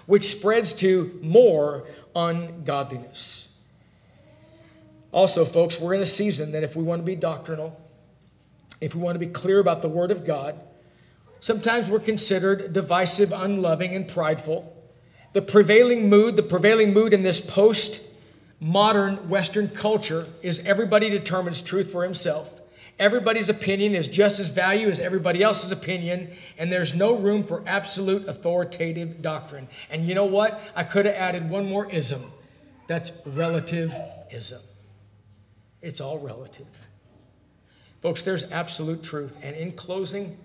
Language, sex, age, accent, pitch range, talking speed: English, male, 50-69, American, 155-200 Hz, 140 wpm